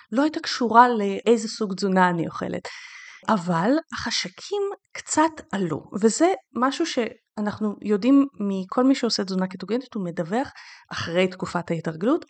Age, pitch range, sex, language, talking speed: 30-49, 190-275 Hz, female, Hebrew, 125 wpm